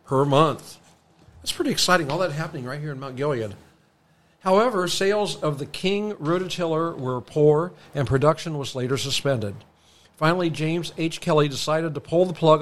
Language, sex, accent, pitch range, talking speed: English, male, American, 130-170 Hz, 165 wpm